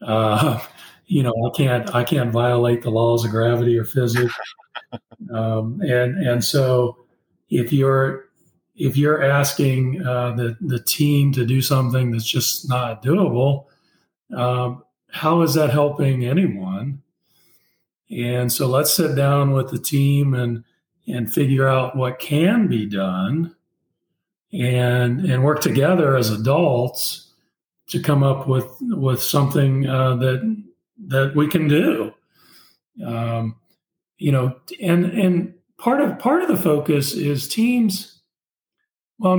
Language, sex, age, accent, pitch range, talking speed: English, male, 40-59, American, 125-155 Hz, 135 wpm